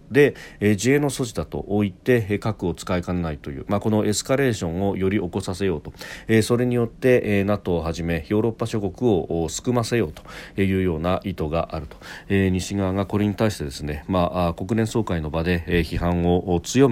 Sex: male